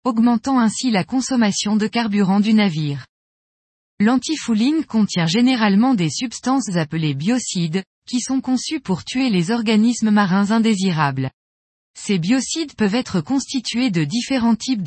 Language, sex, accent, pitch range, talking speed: French, female, French, 185-245 Hz, 130 wpm